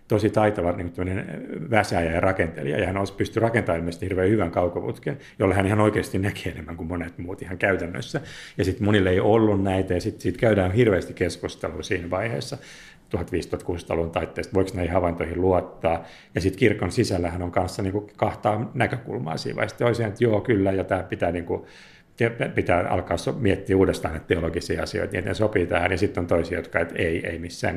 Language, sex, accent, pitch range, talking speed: Finnish, male, native, 85-105 Hz, 180 wpm